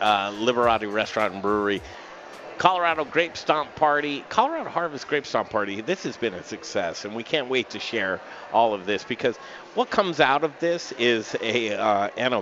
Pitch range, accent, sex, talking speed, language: 100-135 Hz, American, male, 180 wpm, English